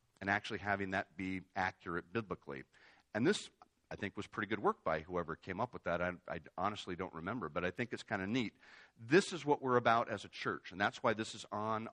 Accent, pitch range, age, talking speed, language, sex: American, 100-135 Hz, 50-69, 235 wpm, English, male